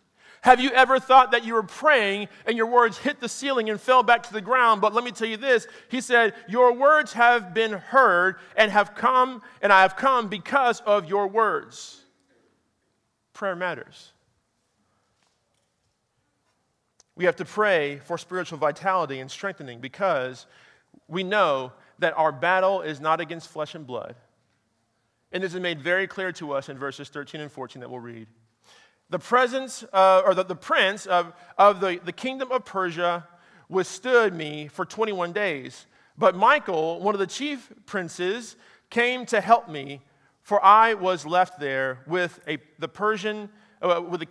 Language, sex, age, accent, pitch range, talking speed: English, male, 40-59, American, 160-225 Hz, 170 wpm